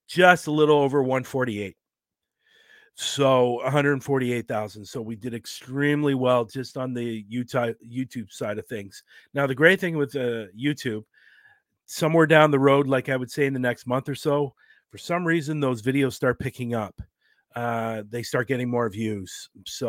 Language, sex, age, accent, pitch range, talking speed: English, male, 40-59, American, 110-135 Hz, 170 wpm